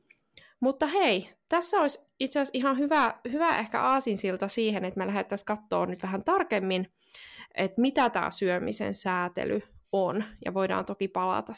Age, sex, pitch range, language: 20-39, female, 195-265 Hz, Finnish